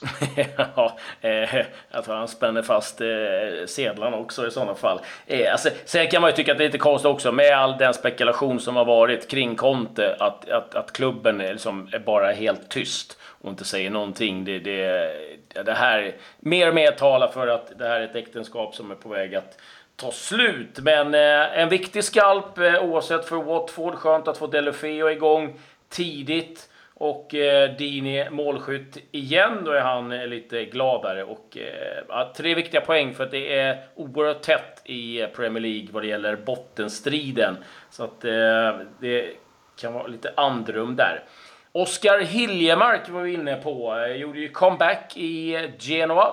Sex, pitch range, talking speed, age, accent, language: male, 120-160 Hz, 170 wpm, 30-49, native, Swedish